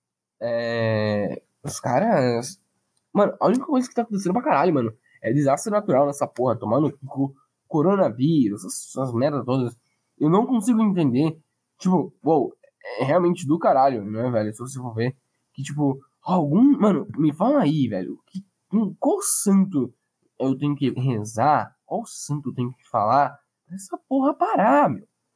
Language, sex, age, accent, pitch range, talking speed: Portuguese, male, 10-29, Brazilian, 140-220 Hz, 155 wpm